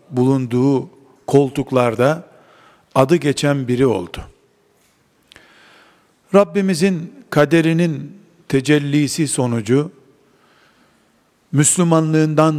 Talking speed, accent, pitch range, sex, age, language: 50 wpm, native, 135-160 Hz, male, 50-69, Turkish